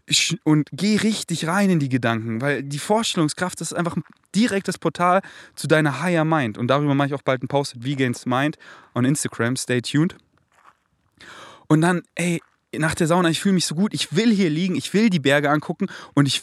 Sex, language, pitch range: male, German, 120-170 Hz